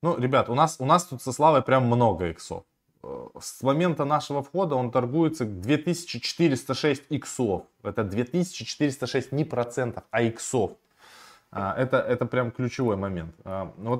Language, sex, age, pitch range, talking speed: Russian, male, 20-39, 105-145 Hz, 135 wpm